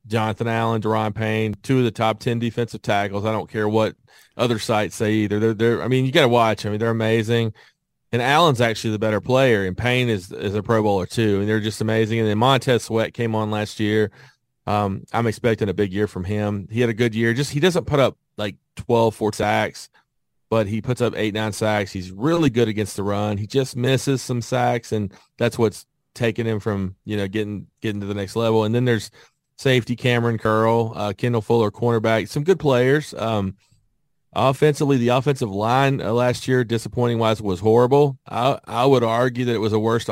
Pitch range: 105-125 Hz